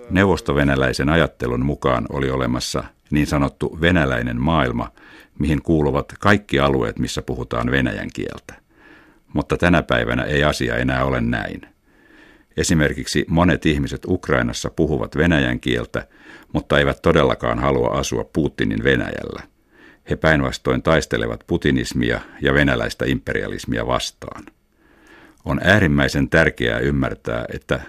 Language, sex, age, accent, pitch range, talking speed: Finnish, male, 60-79, native, 65-80 Hz, 110 wpm